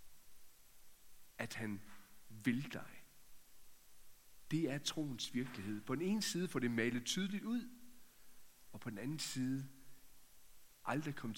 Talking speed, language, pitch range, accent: 125 wpm, Danish, 120-165 Hz, native